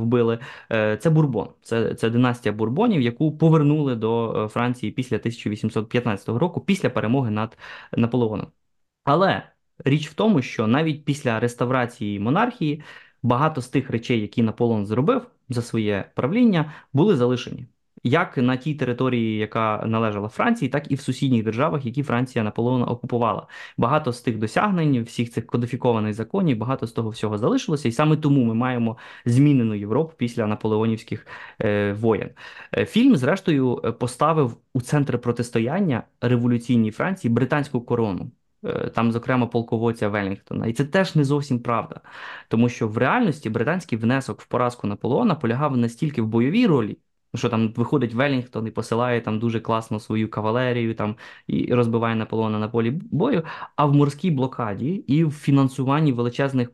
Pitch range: 115-140 Hz